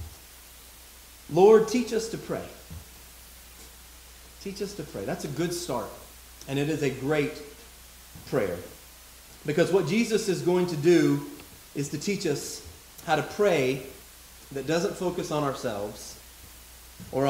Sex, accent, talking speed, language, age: male, American, 135 wpm, English, 30-49